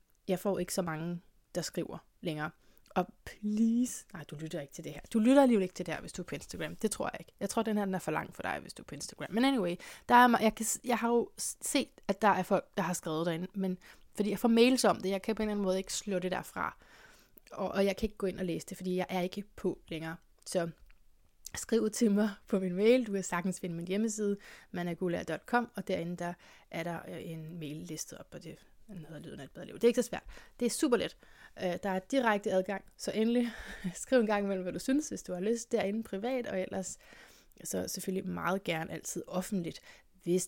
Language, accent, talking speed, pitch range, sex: Danish, native, 245 wpm, 175-215 Hz, female